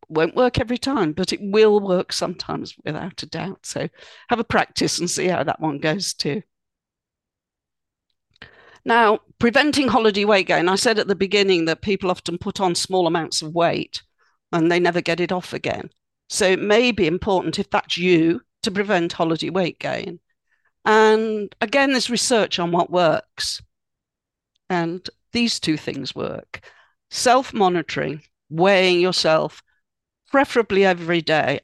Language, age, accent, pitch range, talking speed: English, 50-69, British, 165-210 Hz, 150 wpm